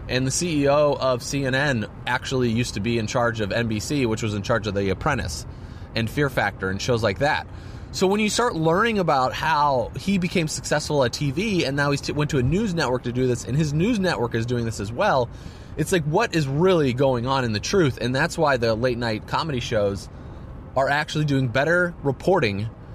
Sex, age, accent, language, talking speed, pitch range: male, 20-39, American, English, 215 wpm, 110-145 Hz